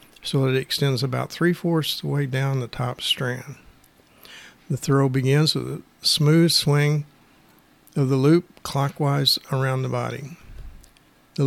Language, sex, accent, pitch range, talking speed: English, male, American, 125-150 Hz, 140 wpm